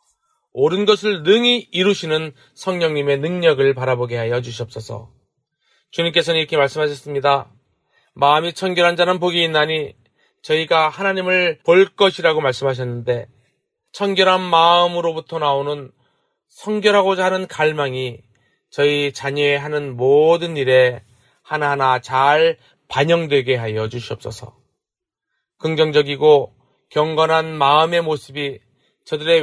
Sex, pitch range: male, 130-170 Hz